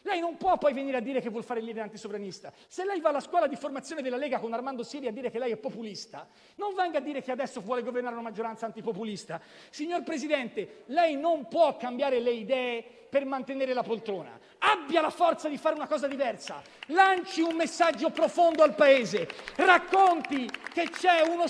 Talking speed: 200 wpm